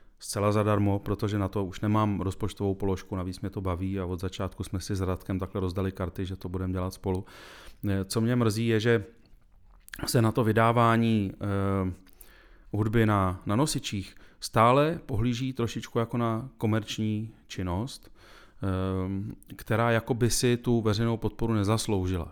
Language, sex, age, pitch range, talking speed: Czech, male, 30-49, 100-115 Hz, 150 wpm